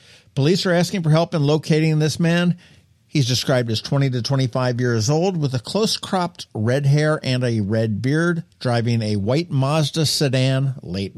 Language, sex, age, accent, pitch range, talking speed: English, male, 50-69, American, 115-155 Hz, 170 wpm